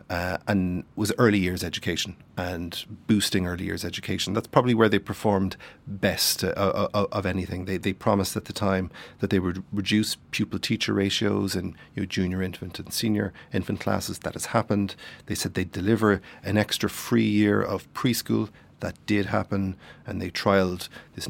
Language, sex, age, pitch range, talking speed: English, male, 40-59, 95-105 Hz, 180 wpm